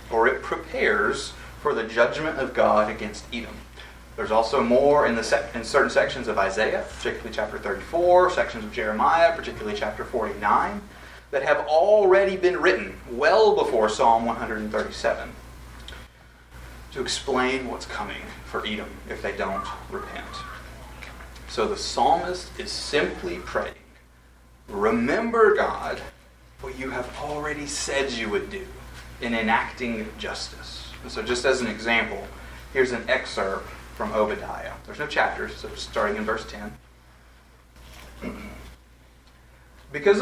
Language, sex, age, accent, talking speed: English, male, 30-49, American, 125 wpm